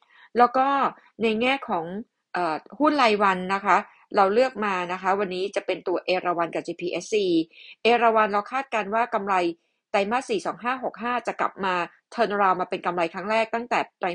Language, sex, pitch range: Thai, female, 180-235 Hz